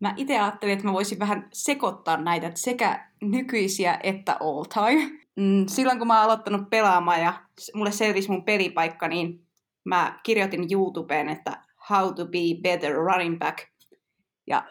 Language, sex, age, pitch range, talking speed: Finnish, female, 20-39, 180-205 Hz, 150 wpm